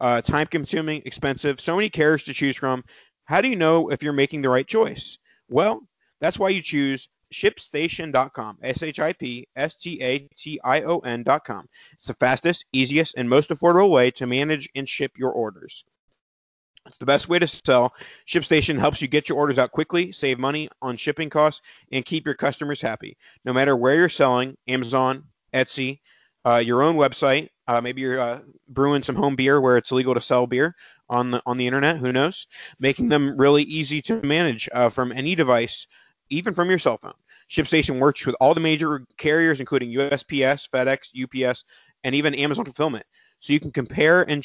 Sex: male